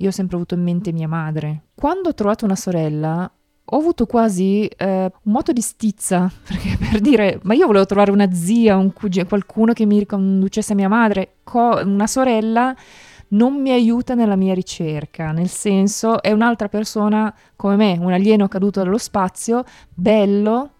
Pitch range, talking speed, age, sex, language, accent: 170-215 Hz, 175 wpm, 20-39, female, Italian, native